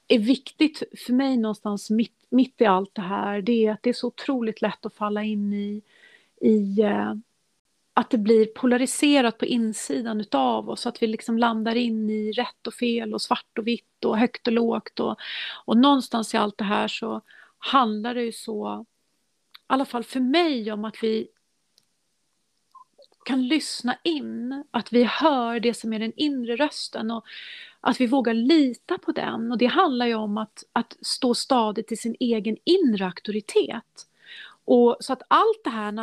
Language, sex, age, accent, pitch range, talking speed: Swedish, female, 40-59, native, 220-270 Hz, 180 wpm